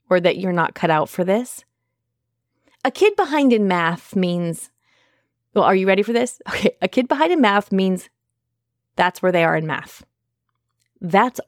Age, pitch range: 30-49, 175-235 Hz